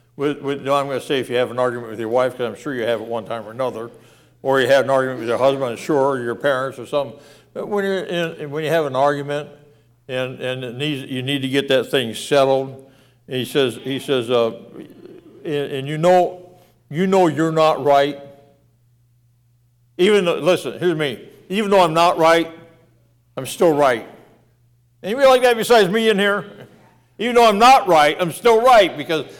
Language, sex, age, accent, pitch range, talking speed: English, male, 60-79, American, 120-150 Hz, 215 wpm